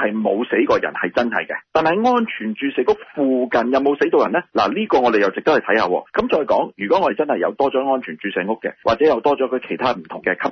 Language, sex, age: Chinese, male, 30-49